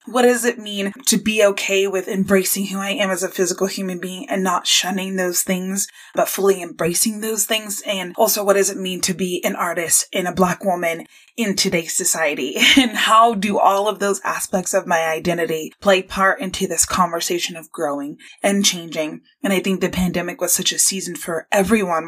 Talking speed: 200 wpm